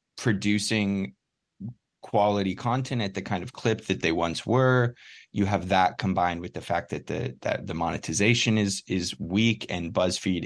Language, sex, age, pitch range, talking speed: English, male, 20-39, 90-105 Hz, 165 wpm